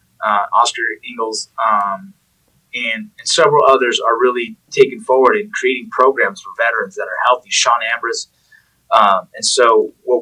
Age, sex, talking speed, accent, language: 20-39, male, 155 wpm, American, English